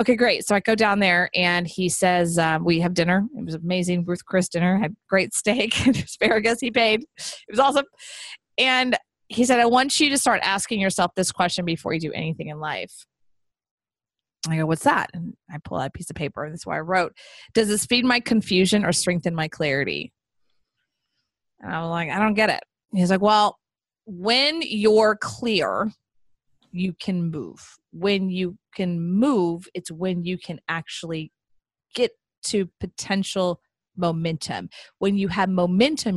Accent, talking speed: American, 175 wpm